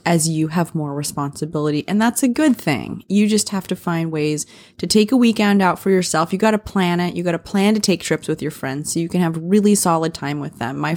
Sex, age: female, 20-39